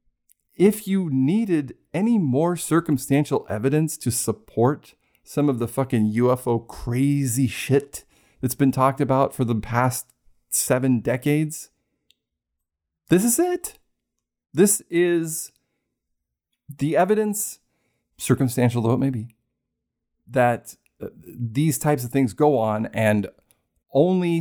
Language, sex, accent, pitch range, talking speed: English, male, American, 110-140 Hz, 115 wpm